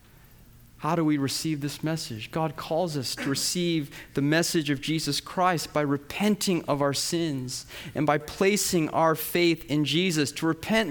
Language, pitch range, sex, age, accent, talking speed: English, 145-200 Hz, male, 30-49, American, 165 wpm